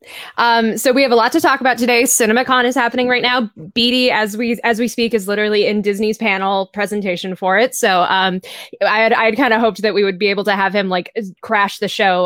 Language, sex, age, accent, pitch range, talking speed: English, female, 10-29, American, 190-240 Hz, 240 wpm